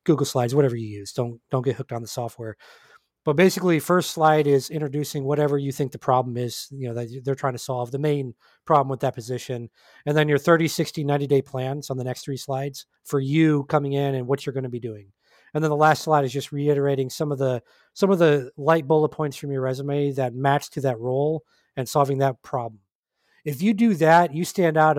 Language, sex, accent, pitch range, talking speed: English, male, American, 135-160 Hz, 230 wpm